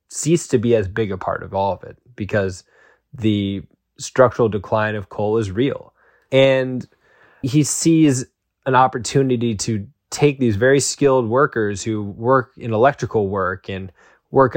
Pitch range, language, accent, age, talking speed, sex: 100-125 Hz, English, American, 20-39, 150 wpm, male